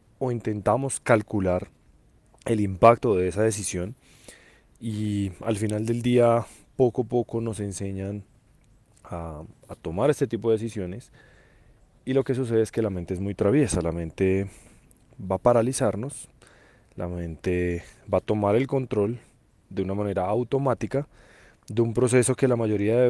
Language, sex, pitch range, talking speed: Spanish, male, 100-120 Hz, 155 wpm